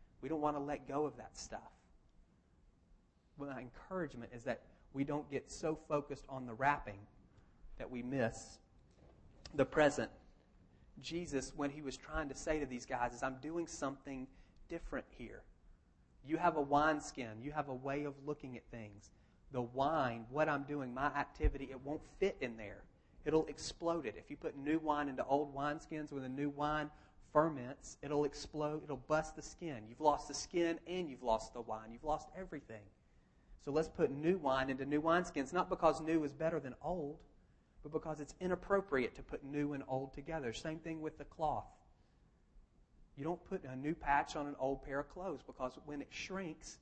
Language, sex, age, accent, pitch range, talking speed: English, male, 30-49, American, 130-155 Hz, 190 wpm